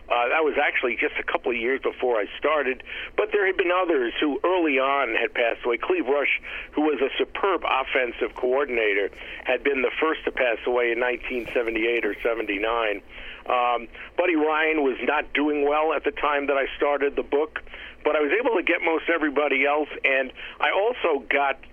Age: 50-69